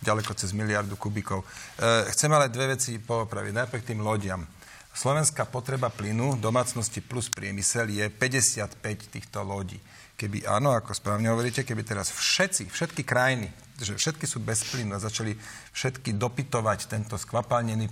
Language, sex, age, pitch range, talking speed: Slovak, male, 40-59, 110-125 Hz, 145 wpm